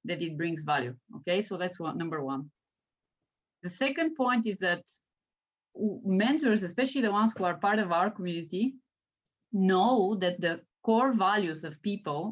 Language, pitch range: English, 165-215 Hz